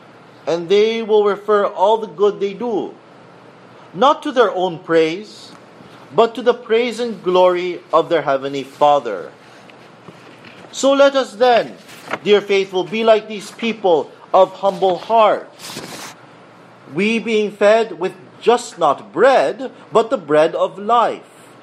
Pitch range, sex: 165-225 Hz, male